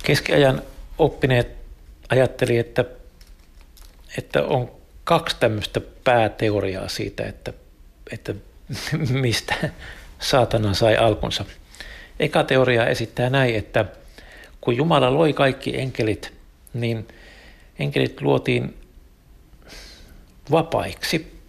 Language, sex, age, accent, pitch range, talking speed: Finnish, male, 60-79, native, 85-130 Hz, 85 wpm